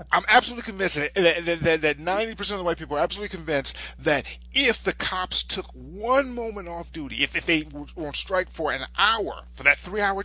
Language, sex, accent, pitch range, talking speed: English, male, American, 140-205 Hz, 185 wpm